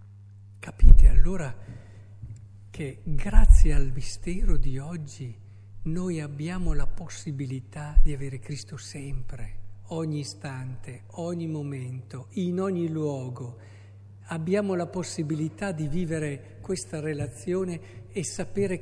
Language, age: Italian, 50-69